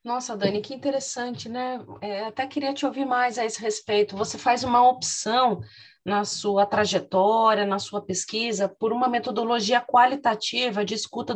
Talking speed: 160 wpm